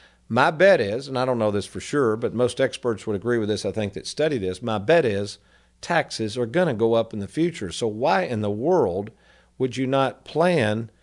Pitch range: 105-140 Hz